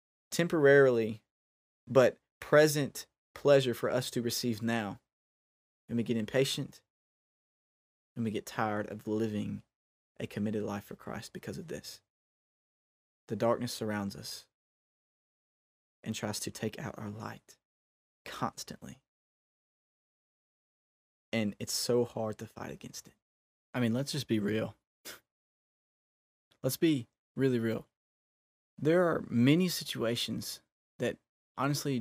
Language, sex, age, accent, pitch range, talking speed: English, male, 20-39, American, 105-125 Hz, 120 wpm